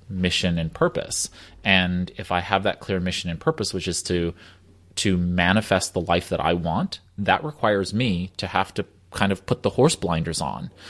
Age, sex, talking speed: 30-49, male, 195 wpm